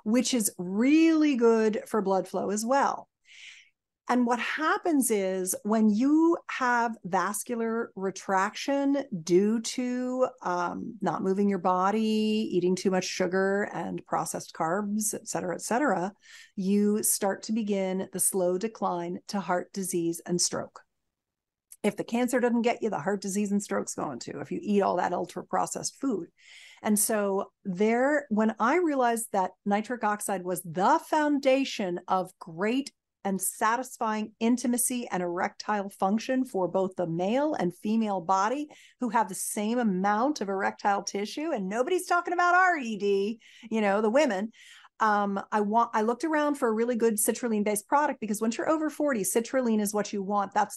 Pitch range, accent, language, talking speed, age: 195-250 Hz, American, English, 160 wpm, 40-59